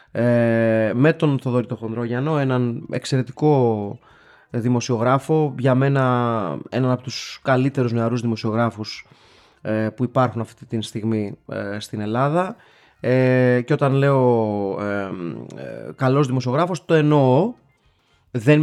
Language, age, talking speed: Greek, 20-39, 120 wpm